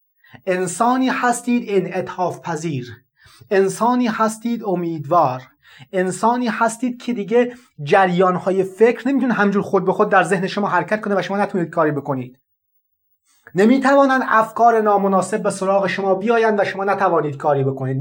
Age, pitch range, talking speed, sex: 30-49, 180-235 Hz, 140 wpm, male